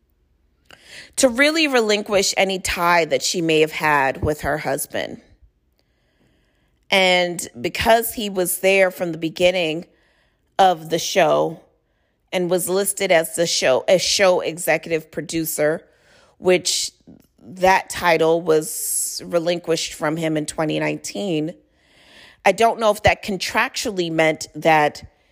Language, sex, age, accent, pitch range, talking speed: English, female, 40-59, American, 155-195 Hz, 120 wpm